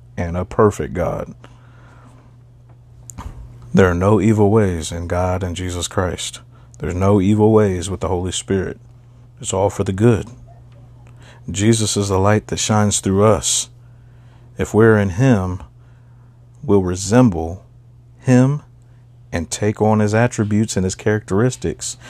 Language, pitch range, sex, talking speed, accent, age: English, 95-120 Hz, male, 135 wpm, American, 40-59